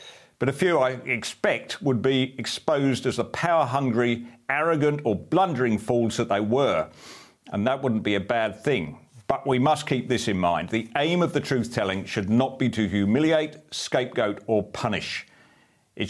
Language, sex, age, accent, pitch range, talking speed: English, male, 40-59, British, 105-135 Hz, 170 wpm